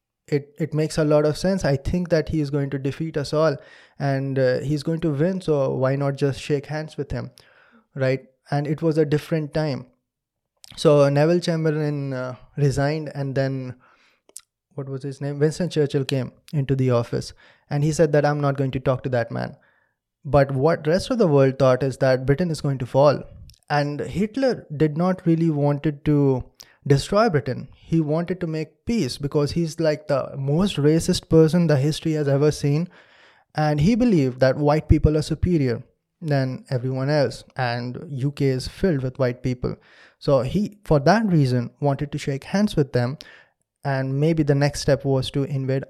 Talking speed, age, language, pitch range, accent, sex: 190 wpm, 20-39, English, 135-160 Hz, Indian, male